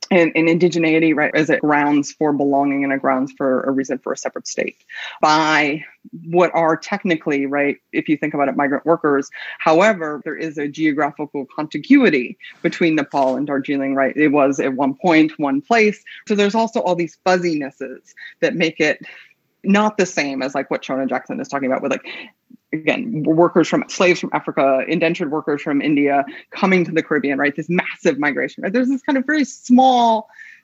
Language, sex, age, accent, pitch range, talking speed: English, female, 20-39, American, 145-205 Hz, 190 wpm